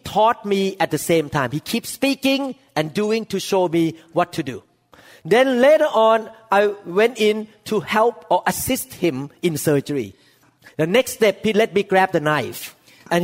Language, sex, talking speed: English, male, 185 wpm